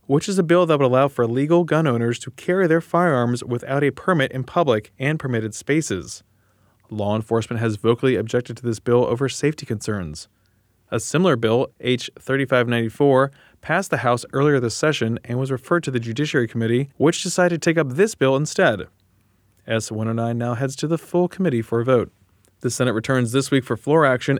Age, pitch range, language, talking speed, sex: 20-39, 115-145 Hz, English, 190 wpm, male